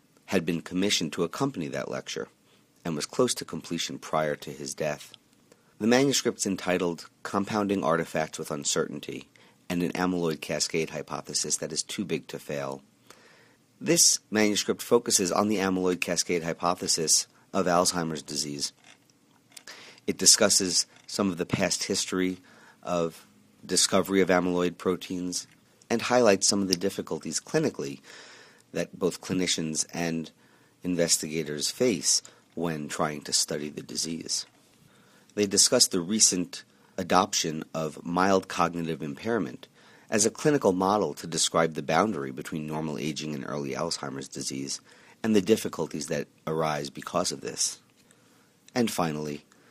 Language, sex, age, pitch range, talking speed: English, male, 40-59, 75-95 Hz, 135 wpm